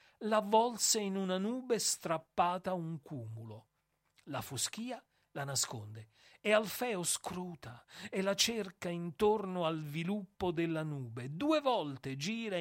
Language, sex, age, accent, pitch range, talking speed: Italian, male, 40-59, native, 145-215 Hz, 120 wpm